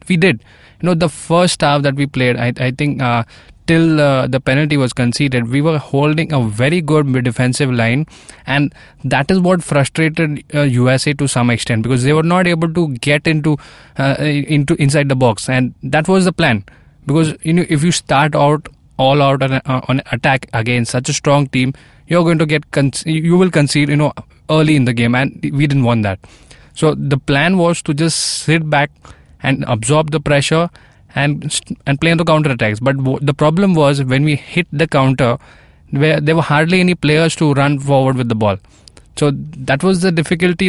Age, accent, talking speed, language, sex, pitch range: 20-39, Indian, 205 wpm, English, male, 130-155 Hz